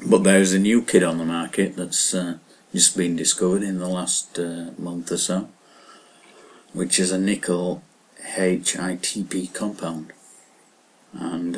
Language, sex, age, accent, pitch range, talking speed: English, male, 40-59, British, 85-95 Hz, 140 wpm